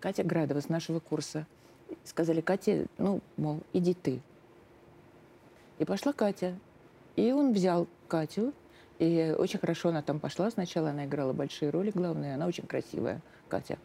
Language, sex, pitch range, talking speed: Russian, female, 155-190 Hz, 145 wpm